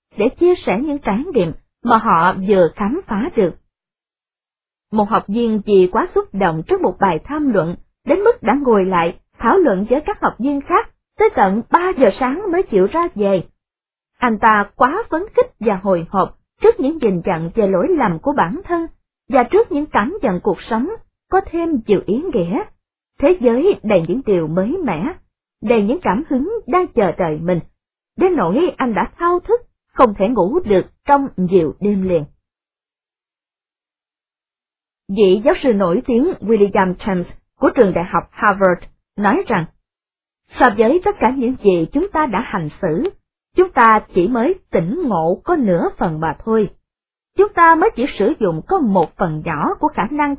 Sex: female